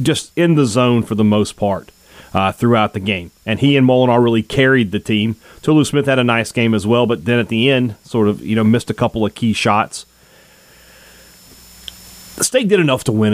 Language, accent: English, American